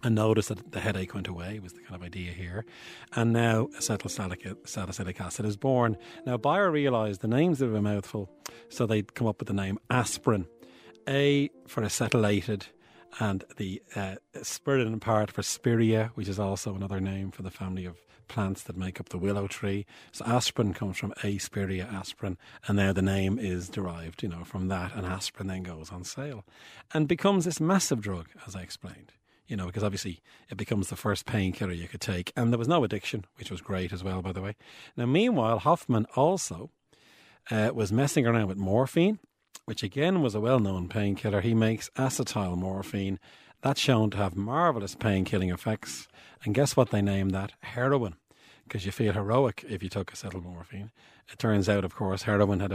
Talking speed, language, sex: 190 wpm, English, male